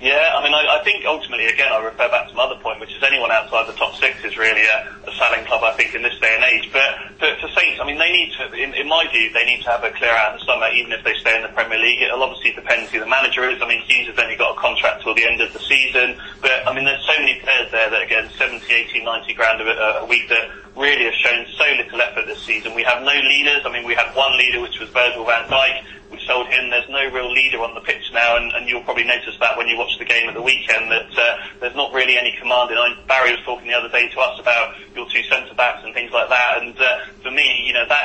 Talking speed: 290 wpm